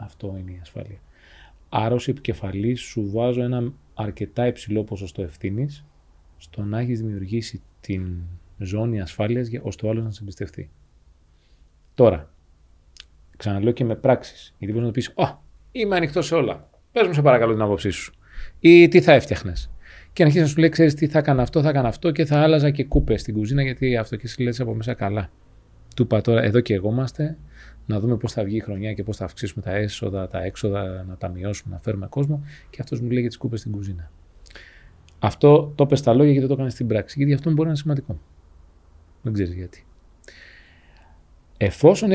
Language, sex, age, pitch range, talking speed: Greek, male, 30-49, 90-125 Hz, 195 wpm